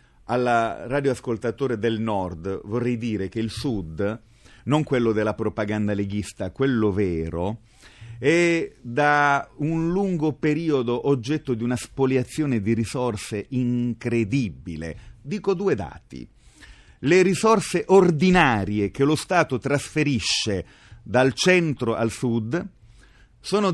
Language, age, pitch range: Italian, 30-49, 115-185 Hz